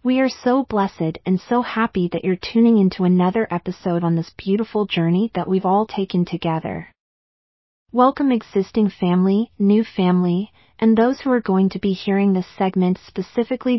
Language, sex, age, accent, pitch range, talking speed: English, female, 30-49, American, 180-220 Hz, 165 wpm